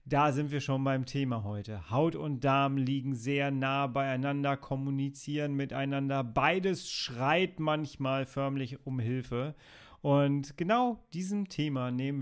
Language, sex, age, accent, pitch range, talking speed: German, male, 40-59, German, 130-155 Hz, 135 wpm